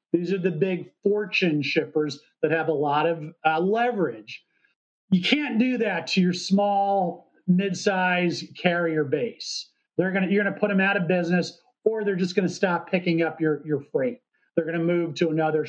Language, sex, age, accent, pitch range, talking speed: English, male, 40-59, American, 170-220 Hz, 195 wpm